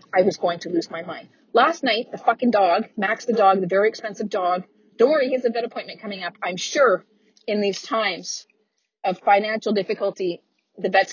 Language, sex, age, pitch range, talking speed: English, female, 30-49, 205-270 Hz, 205 wpm